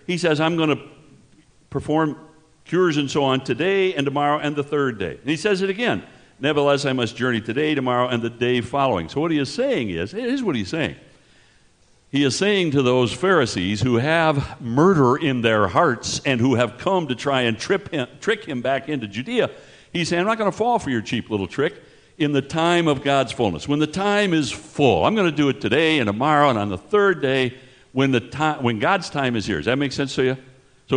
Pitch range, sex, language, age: 125-170 Hz, male, English, 60-79